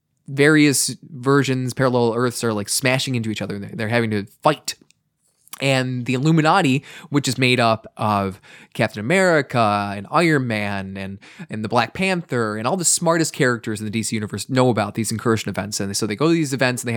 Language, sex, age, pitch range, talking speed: English, male, 20-39, 115-155 Hz, 200 wpm